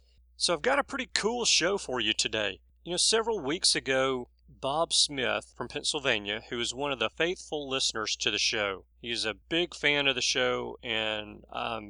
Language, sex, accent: English, male, American